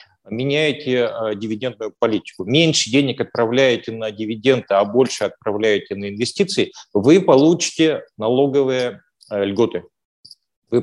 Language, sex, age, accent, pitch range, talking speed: Russian, male, 40-59, native, 110-155 Hz, 100 wpm